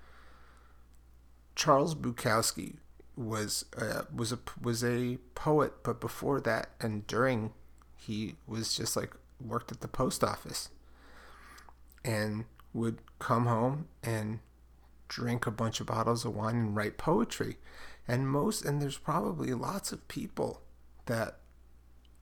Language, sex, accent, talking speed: English, male, American, 125 wpm